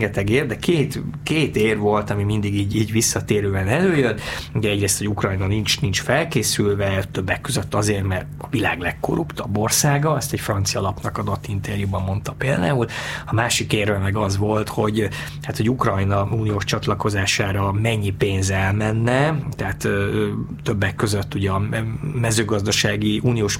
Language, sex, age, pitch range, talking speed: Hungarian, male, 20-39, 100-120 Hz, 145 wpm